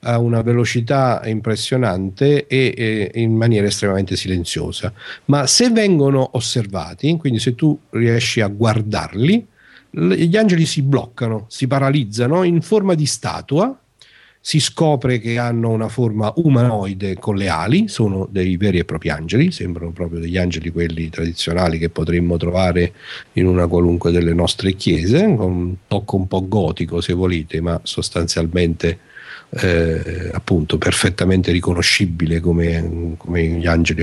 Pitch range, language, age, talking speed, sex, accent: 90-135 Hz, Italian, 50-69, 140 wpm, male, native